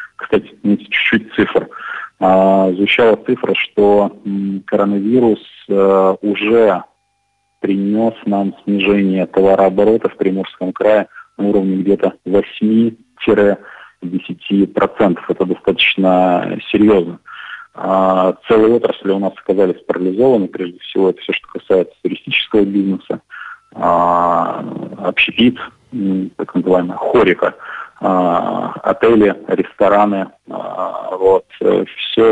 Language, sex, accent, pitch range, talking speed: Russian, male, native, 95-110 Hz, 80 wpm